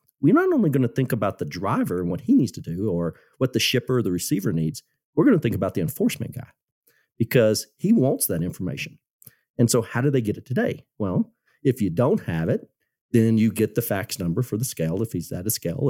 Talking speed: 240 wpm